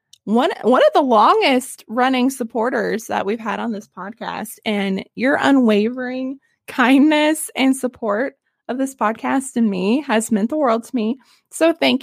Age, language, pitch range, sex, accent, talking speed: 20-39, English, 225-315 Hz, female, American, 160 wpm